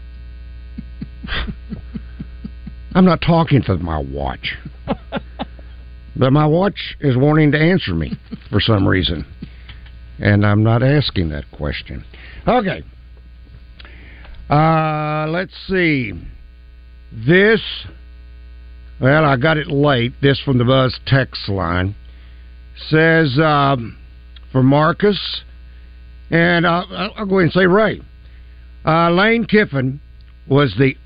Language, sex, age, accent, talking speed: English, male, 60-79, American, 110 wpm